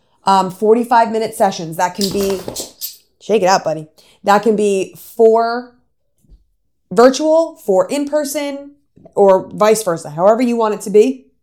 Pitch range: 180-220 Hz